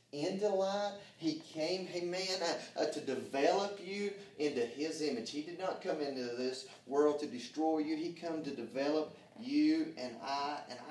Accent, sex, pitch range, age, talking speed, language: American, male, 170-245 Hz, 30-49, 170 wpm, English